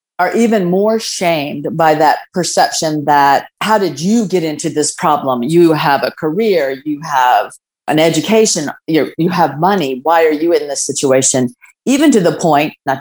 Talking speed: 170 wpm